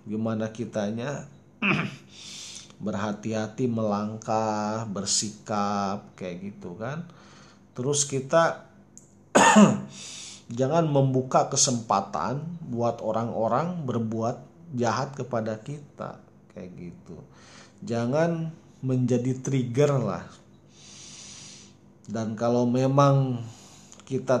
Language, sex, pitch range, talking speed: Indonesian, male, 115-145 Hz, 70 wpm